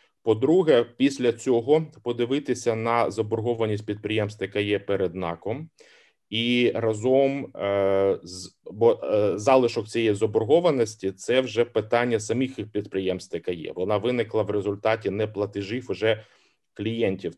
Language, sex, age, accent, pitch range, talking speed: Ukrainian, male, 30-49, native, 100-120 Hz, 100 wpm